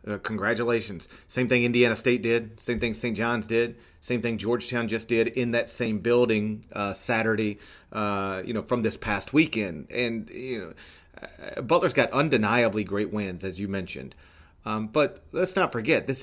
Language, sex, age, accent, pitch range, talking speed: English, male, 30-49, American, 105-130 Hz, 175 wpm